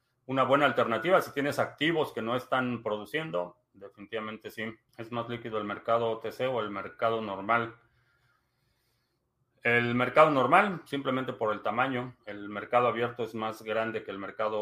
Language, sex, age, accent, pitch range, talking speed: Spanish, male, 40-59, Mexican, 110-130 Hz, 155 wpm